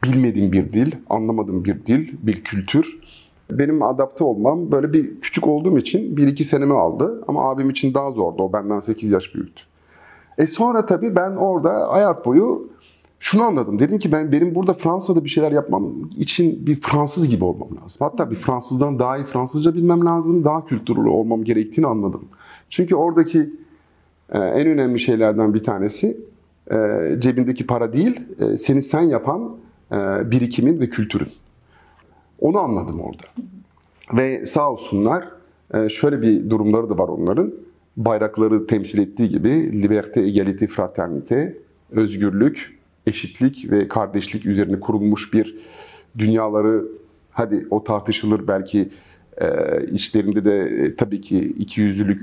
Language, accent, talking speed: Turkish, native, 135 wpm